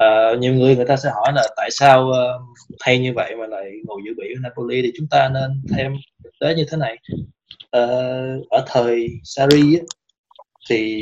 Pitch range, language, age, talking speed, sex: 115-145 Hz, Vietnamese, 20-39, 185 wpm, male